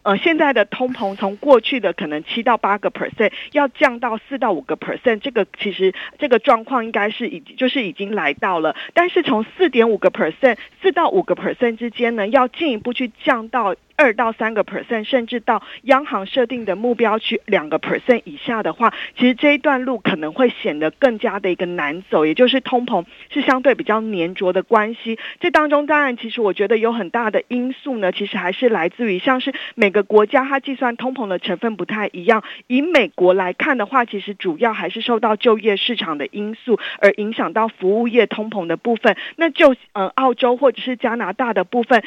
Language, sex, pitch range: Chinese, female, 205-260 Hz